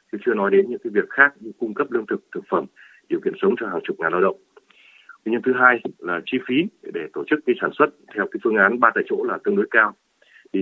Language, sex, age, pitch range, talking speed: Vietnamese, male, 30-49, 310-400 Hz, 270 wpm